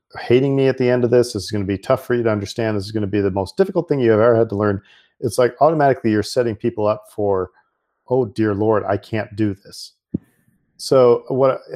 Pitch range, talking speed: 105-135 Hz, 245 wpm